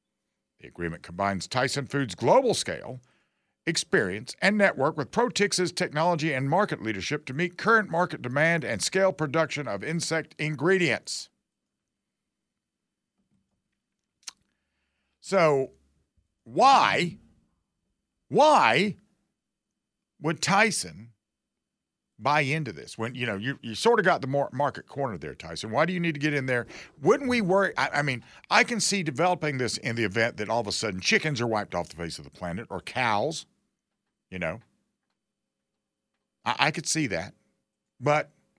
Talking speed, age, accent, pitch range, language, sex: 145 wpm, 50-69, American, 115-175 Hz, English, male